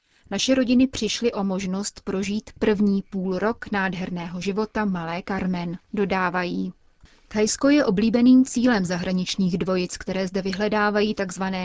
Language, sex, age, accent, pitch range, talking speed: Czech, female, 30-49, native, 185-215 Hz, 125 wpm